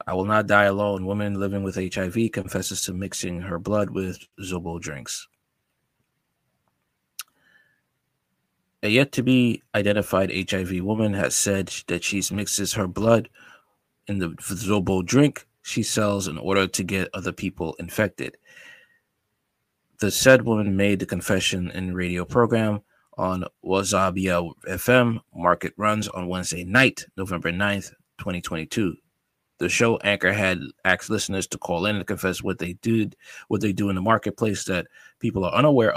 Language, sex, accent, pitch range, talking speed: English, male, American, 90-110 Hz, 140 wpm